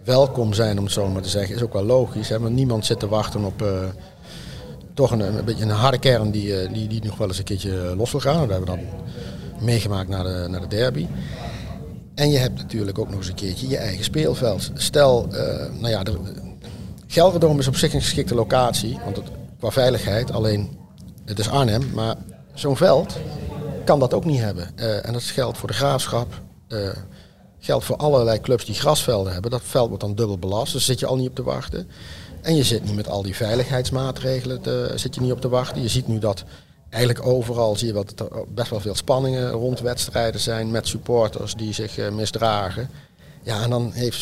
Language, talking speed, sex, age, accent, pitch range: Dutch, 215 wpm, male, 50-69, Dutch, 100-125 Hz